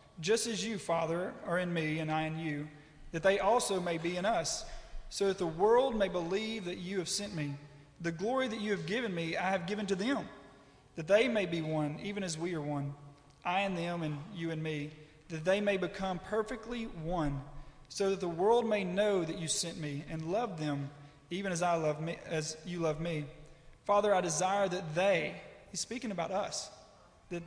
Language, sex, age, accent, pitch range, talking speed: English, male, 30-49, American, 150-195 Hz, 210 wpm